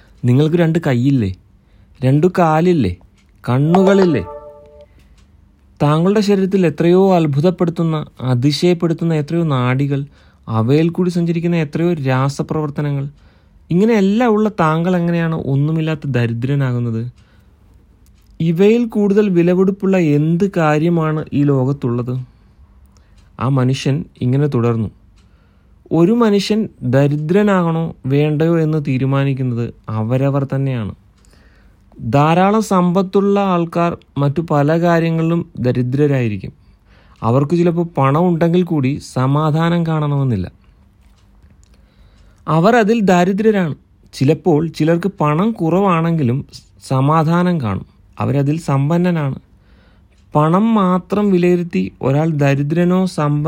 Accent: Indian